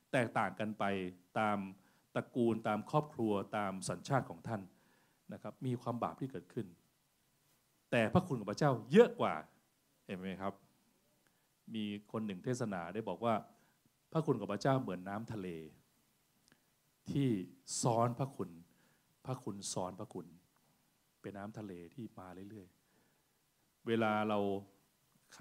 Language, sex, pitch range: Thai, male, 100-140 Hz